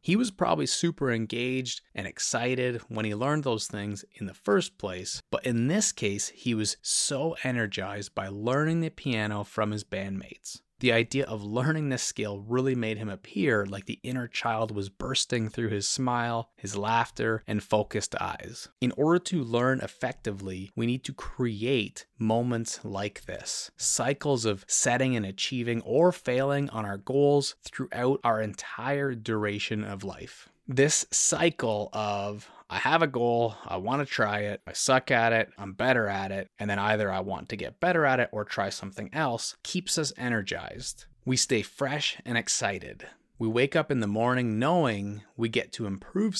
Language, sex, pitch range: English, male, 105-130 Hz